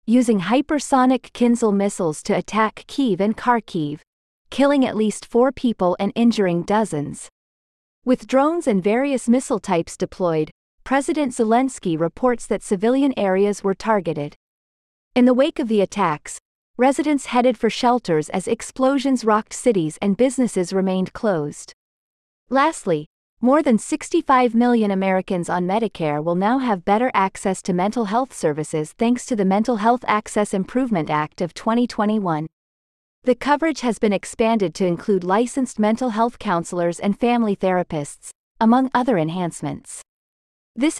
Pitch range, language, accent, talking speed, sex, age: 185-245 Hz, English, American, 140 wpm, female, 30-49